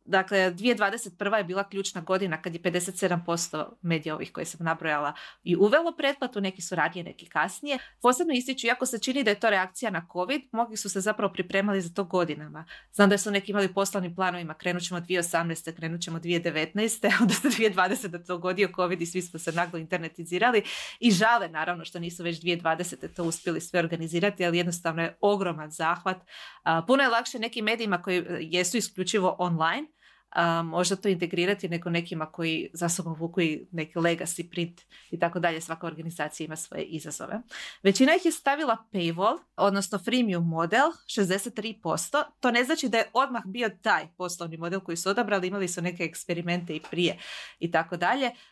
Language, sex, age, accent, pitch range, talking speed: Croatian, female, 30-49, native, 170-215 Hz, 180 wpm